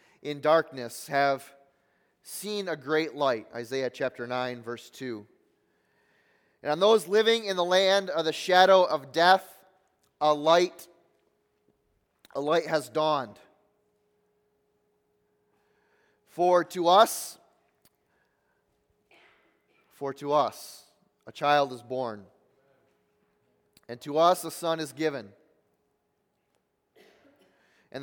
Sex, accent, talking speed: male, American, 105 wpm